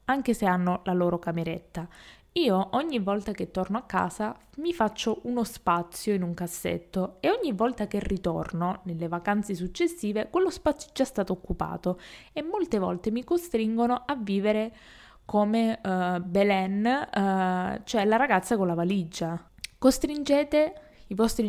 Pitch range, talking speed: 180-235 Hz, 145 wpm